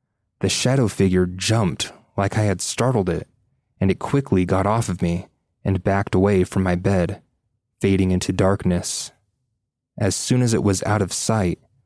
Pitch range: 95-115 Hz